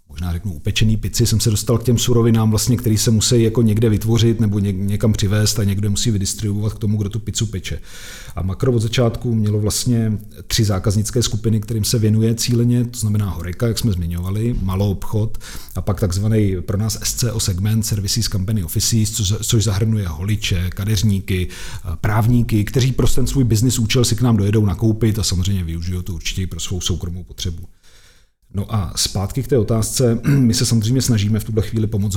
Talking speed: 185 wpm